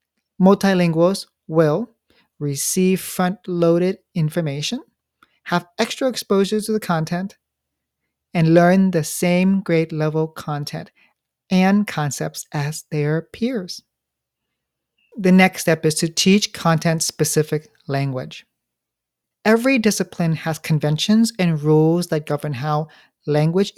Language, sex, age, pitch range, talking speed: English, male, 40-59, 155-200 Hz, 100 wpm